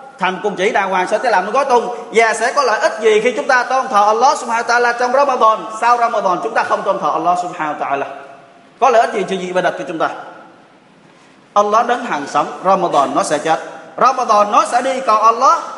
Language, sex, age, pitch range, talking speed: Vietnamese, male, 20-39, 180-240 Hz, 230 wpm